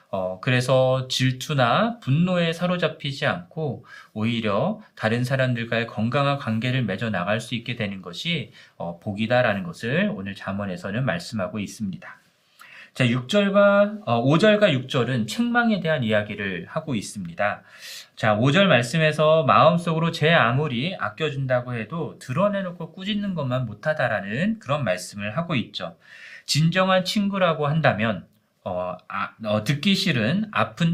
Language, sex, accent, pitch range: Korean, male, native, 120-180 Hz